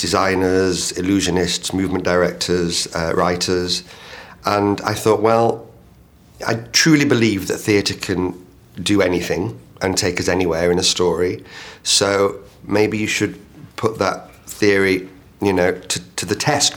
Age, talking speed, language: 40-59, 135 wpm, English